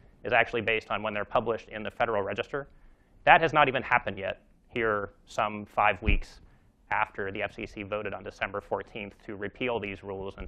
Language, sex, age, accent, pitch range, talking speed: English, male, 30-49, American, 100-125 Hz, 190 wpm